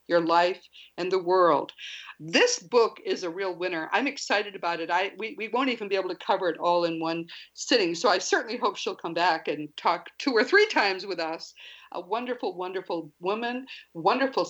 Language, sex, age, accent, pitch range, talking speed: English, female, 50-69, American, 175-285 Hz, 205 wpm